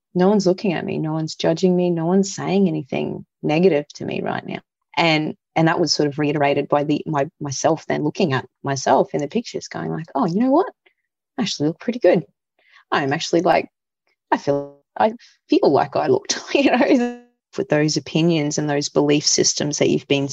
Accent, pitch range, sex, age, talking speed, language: Australian, 145-180 Hz, female, 30-49, 205 wpm, English